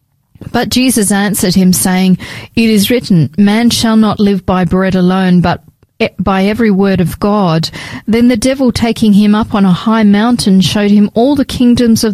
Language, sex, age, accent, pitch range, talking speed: English, female, 40-59, Australian, 185-225 Hz, 185 wpm